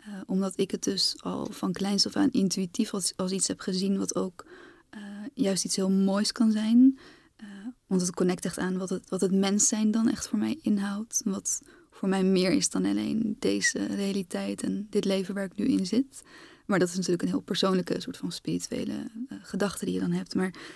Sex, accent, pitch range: female, Dutch, 190-245 Hz